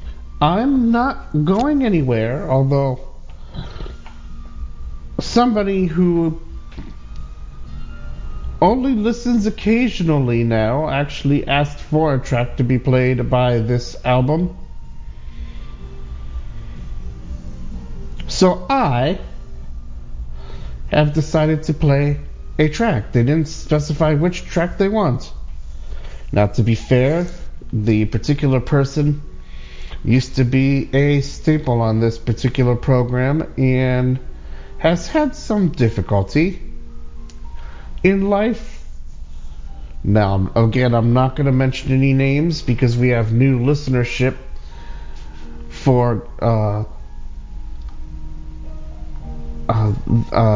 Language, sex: English, male